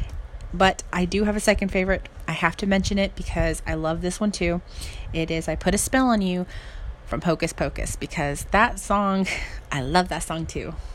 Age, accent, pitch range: 20-39, American, 160-205 Hz